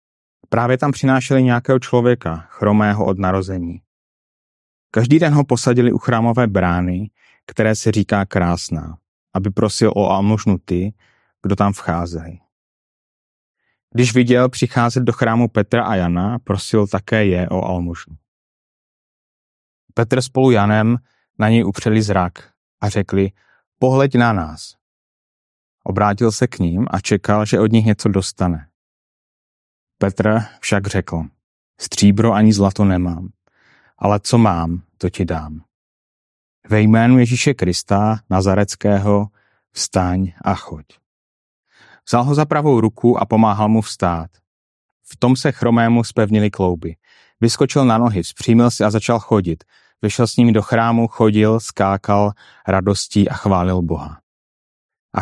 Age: 30-49